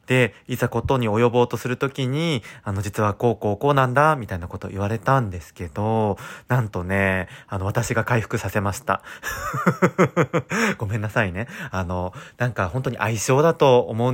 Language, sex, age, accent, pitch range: Japanese, male, 30-49, native, 105-135 Hz